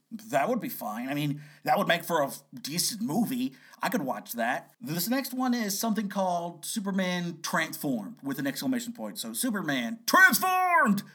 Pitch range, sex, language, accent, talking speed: 145-235 Hz, male, English, American, 170 wpm